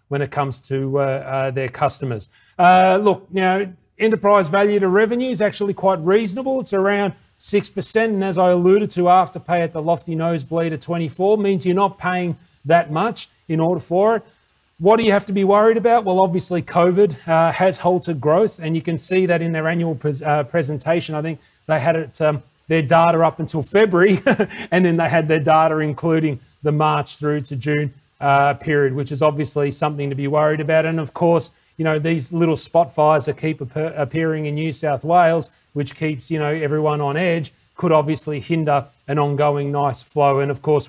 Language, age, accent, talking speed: English, 30-49, Australian, 205 wpm